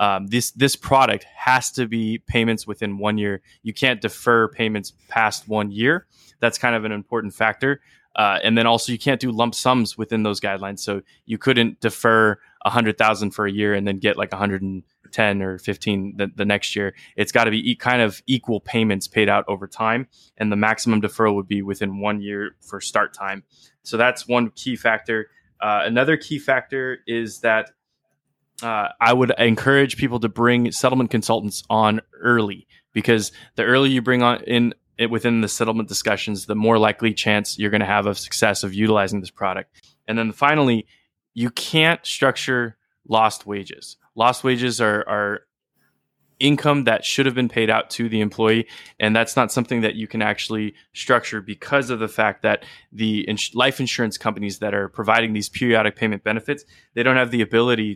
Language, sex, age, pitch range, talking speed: English, male, 20-39, 105-120 Hz, 185 wpm